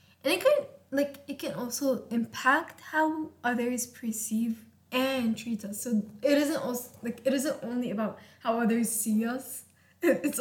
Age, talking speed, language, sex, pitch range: 10-29, 160 wpm, English, female, 215-265 Hz